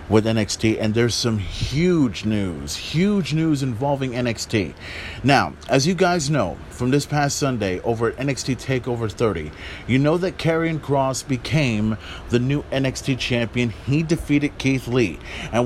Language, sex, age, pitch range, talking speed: English, male, 30-49, 105-140 Hz, 155 wpm